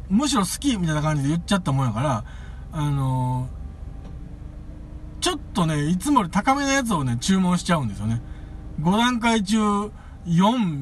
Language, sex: Japanese, male